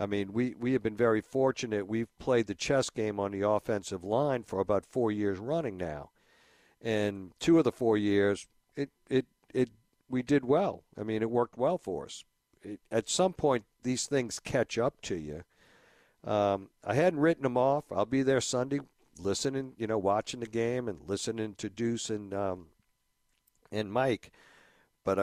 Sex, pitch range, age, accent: male, 105-130 Hz, 60-79, American